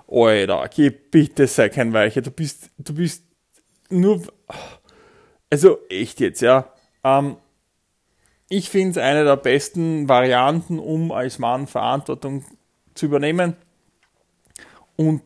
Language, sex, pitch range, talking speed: German, male, 130-165 Hz, 115 wpm